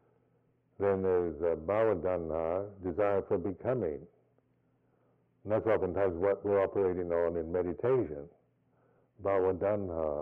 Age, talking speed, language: 60-79, 95 wpm, English